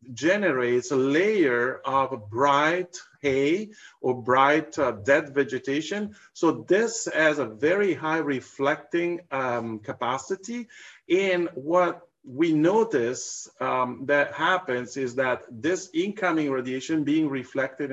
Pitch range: 130-170 Hz